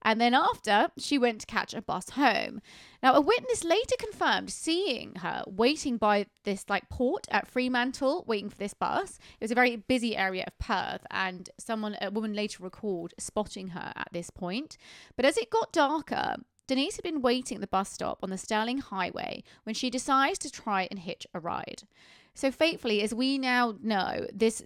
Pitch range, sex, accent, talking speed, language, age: 195-260 Hz, female, British, 195 wpm, English, 30-49